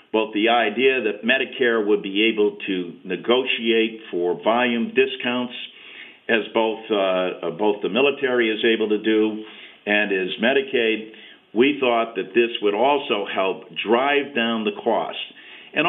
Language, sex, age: English, male, 50-69